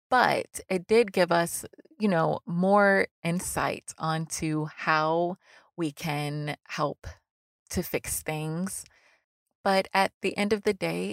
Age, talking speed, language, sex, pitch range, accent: 20-39, 130 wpm, English, female, 160-190 Hz, American